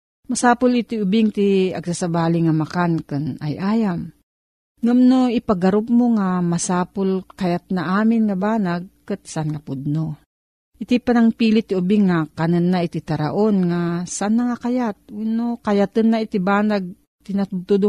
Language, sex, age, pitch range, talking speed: Filipino, female, 40-59, 165-220 Hz, 140 wpm